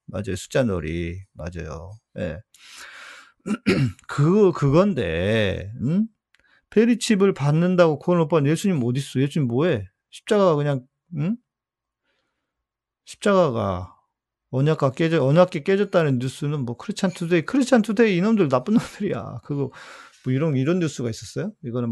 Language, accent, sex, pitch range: Korean, native, male, 110-165 Hz